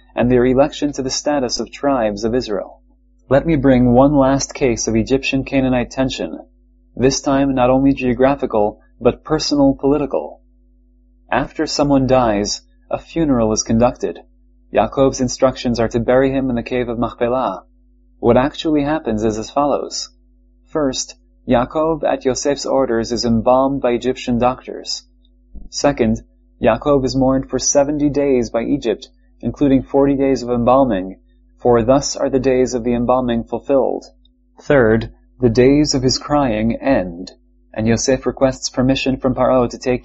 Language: English